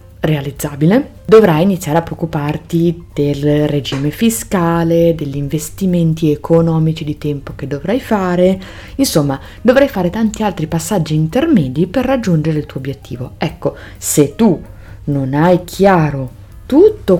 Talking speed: 120 wpm